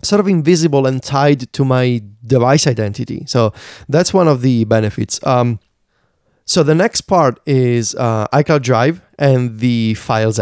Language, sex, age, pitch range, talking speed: English, male, 30-49, 115-150 Hz, 155 wpm